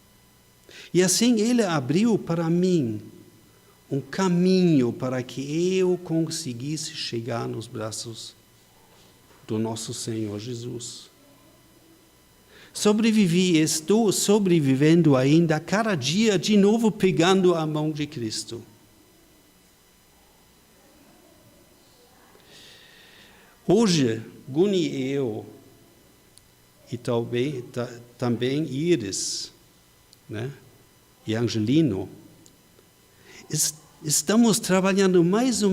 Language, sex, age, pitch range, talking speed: Portuguese, male, 60-79, 120-180 Hz, 80 wpm